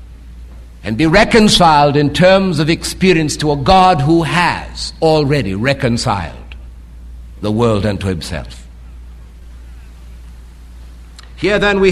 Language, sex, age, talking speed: English, male, 60-79, 105 wpm